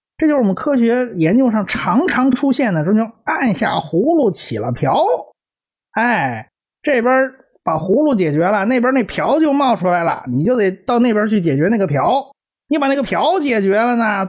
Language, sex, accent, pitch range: Chinese, male, native, 160-250 Hz